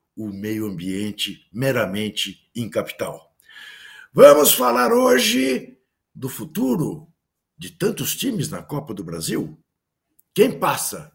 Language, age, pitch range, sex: Portuguese, 60-79, 125-180 Hz, male